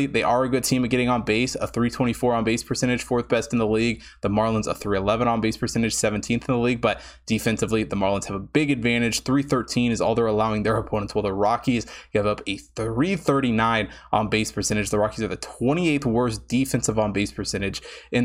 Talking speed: 215 wpm